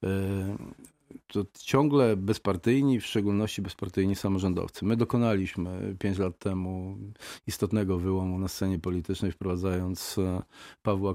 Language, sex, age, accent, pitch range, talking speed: Polish, male, 40-59, native, 95-110 Hz, 100 wpm